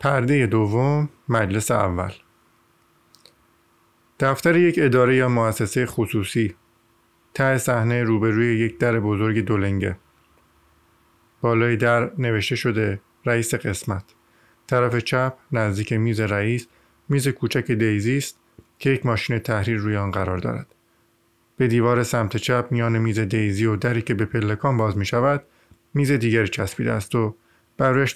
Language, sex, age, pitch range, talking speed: Persian, male, 50-69, 105-125 Hz, 130 wpm